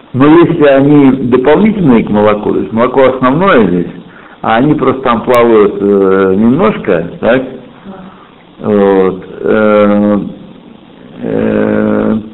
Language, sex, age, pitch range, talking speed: Russian, male, 60-79, 105-140 Hz, 100 wpm